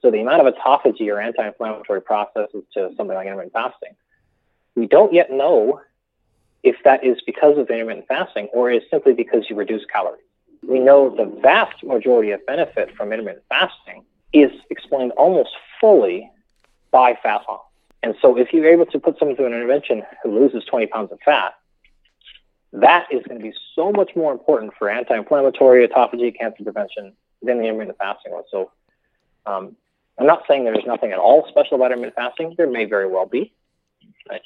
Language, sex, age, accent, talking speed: English, male, 30-49, American, 180 wpm